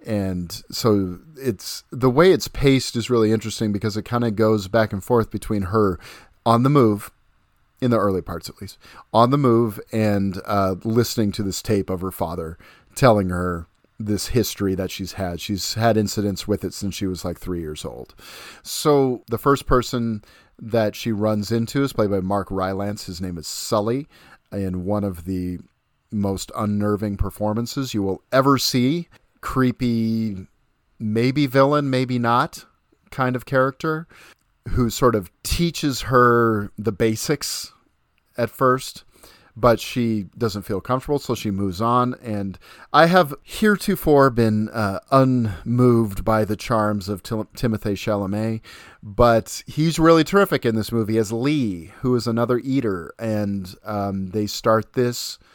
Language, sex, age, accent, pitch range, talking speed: English, male, 40-59, American, 100-125 Hz, 160 wpm